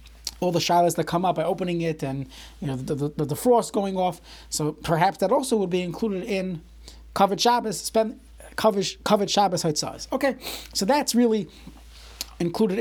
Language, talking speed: English, 170 wpm